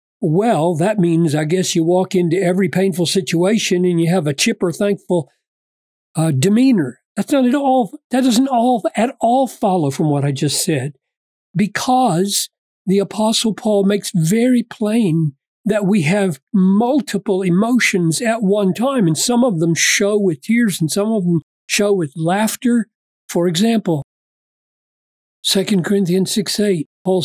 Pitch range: 180-230 Hz